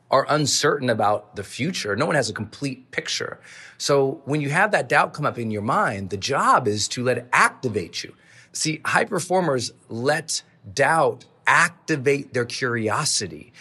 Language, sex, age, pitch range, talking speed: English, male, 40-59, 130-190 Hz, 170 wpm